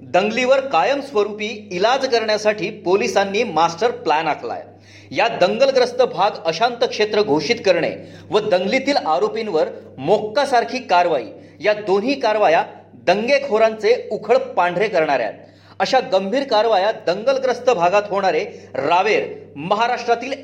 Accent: native